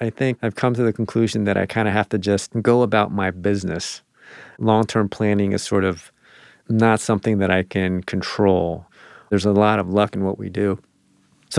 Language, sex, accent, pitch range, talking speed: English, male, American, 95-110 Hz, 200 wpm